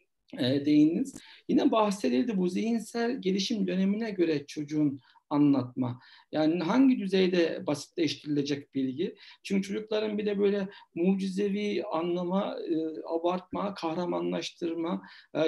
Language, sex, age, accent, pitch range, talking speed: Turkish, male, 60-79, native, 155-205 Hz, 100 wpm